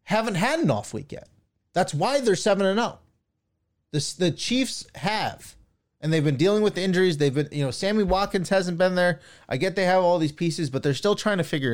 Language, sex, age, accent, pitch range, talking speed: English, male, 20-39, American, 120-165 Hz, 230 wpm